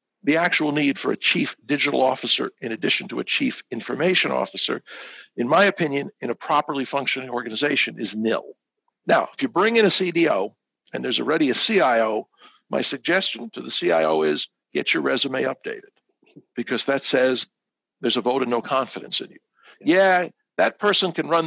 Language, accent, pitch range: English, American, 130-205 Hz